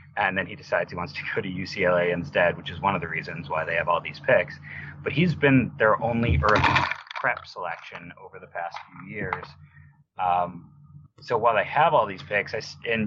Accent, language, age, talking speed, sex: American, English, 30-49, 205 wpm, male